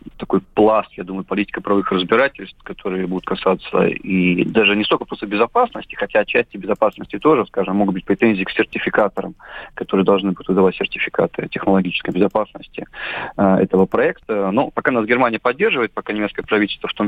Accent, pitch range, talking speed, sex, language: native, 95-115 Hz, 160 wpm, male, Russian